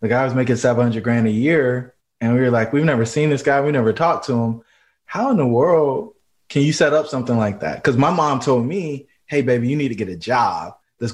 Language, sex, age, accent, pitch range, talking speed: English, male, 20-39, American, 110-125 Hz, 255 wpm